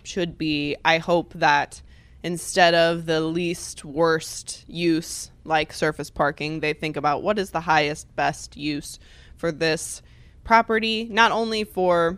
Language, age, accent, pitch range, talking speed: English, 20-39, American, 160-190 Hz, 145 wpm